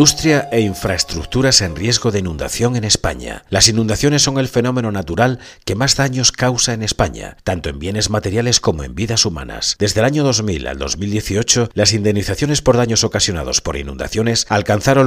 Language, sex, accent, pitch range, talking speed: Spanish, male, Spanish, 100-125 Hz, 170 wpm